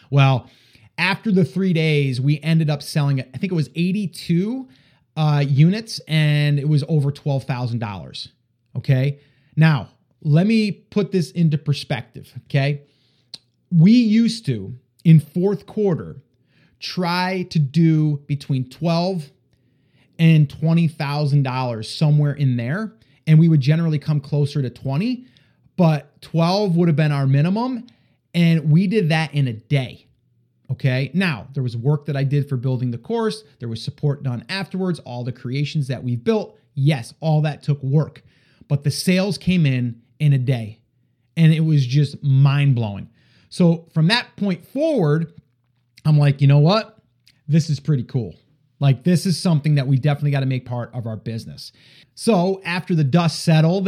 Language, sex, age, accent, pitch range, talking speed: English, male, 30-49, American, 135-165 Hz, 165 wpm